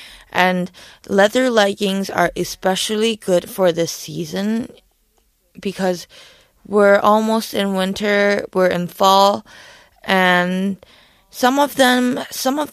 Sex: female